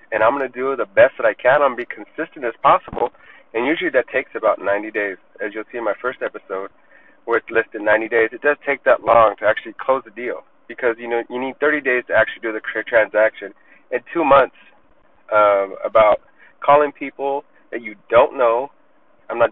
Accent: American